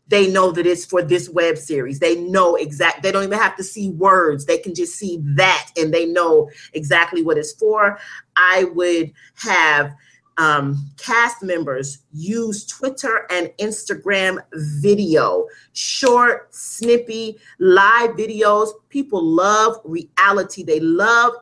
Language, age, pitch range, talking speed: English, 40-59, 170-215 Hz, 140 wpm